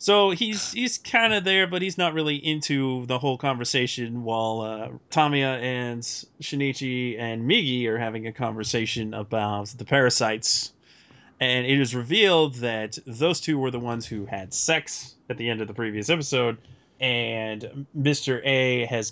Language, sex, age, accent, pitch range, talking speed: English, male, 20-39, American, 115-145 Hz, 165 wpm